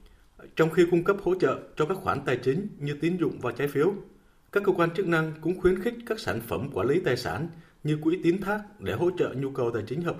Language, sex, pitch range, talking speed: Vietnamese, male, 135-185 Hz, 260 wpm